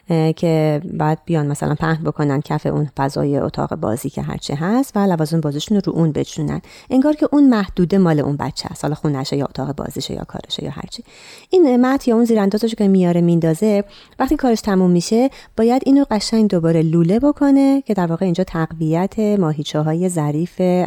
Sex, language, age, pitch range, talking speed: female, Persian, 30-49, 155-230 Hz, 180 wpm